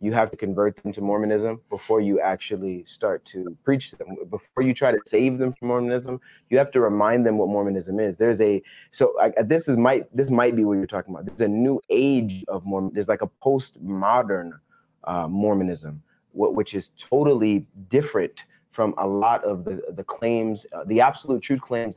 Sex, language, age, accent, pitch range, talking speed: male, English, 30-49, American, 100-130 Hz, 195 wpm